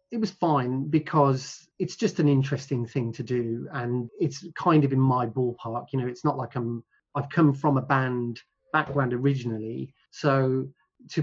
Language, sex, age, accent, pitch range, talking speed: English, male, 30-49, British, 125-155 Hz, 185 wpm